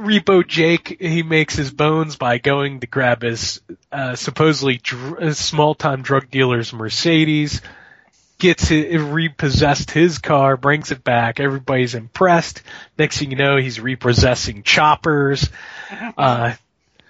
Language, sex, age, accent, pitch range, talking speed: English, male, 20-39, American, 125-150 Hz, 135 wpm